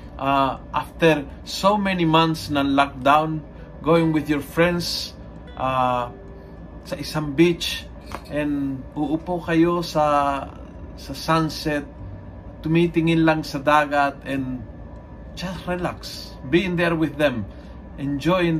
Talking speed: 105 wpm